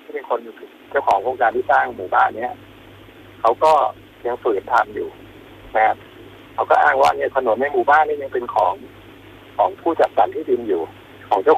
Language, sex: Thai, male